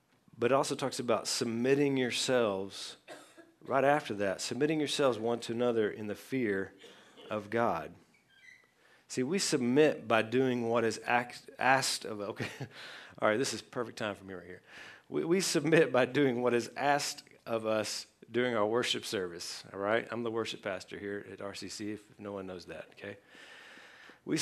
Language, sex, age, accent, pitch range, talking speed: English, male, 40-59, American, 110-140 Hz, 175 wpm